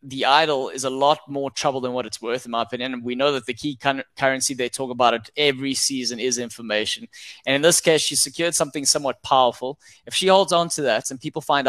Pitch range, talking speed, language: 130-155 Hz, 240 wpm, English